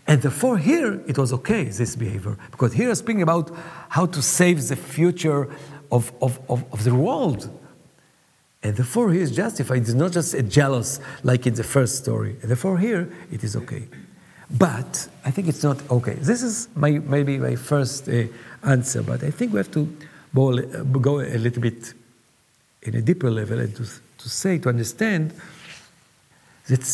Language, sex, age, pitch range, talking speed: English, male, 50-69, 120-165 Hz, 180 wpm